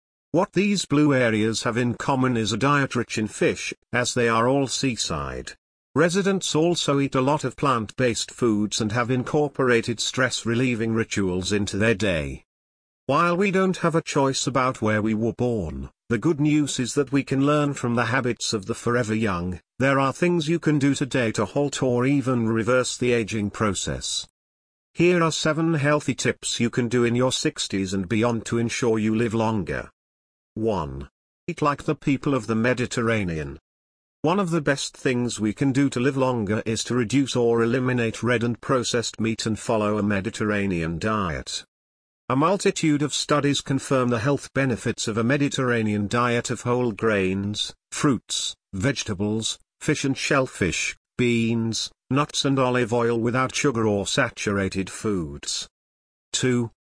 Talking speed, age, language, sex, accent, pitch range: 165 wpm, 50-69, English, male, British, 105-140 Hz